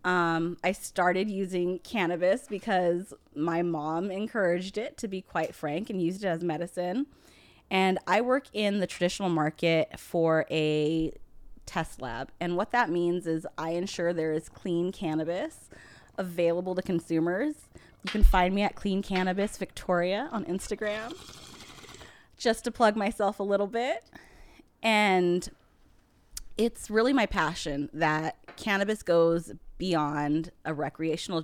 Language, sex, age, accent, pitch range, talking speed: English, female, 20-39, American, 160-195 Hz, 135 wpm